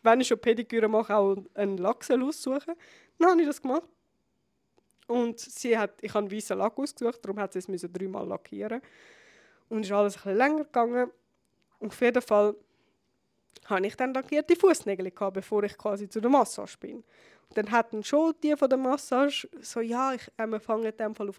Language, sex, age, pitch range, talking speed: English, female, 20-39, 200-245 Hz, 195 wpm